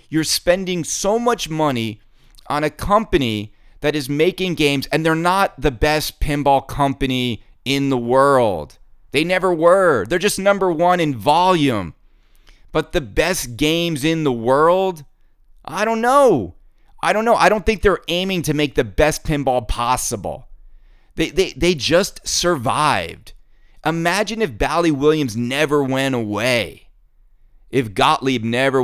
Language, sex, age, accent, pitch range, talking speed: English, male, 30-49, American, 135-185 Hz, 145 wpm